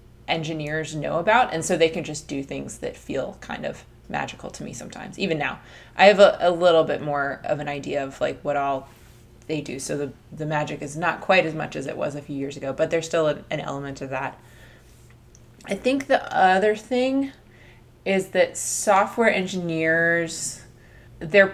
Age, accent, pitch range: 20-39, American, 145-175 Hz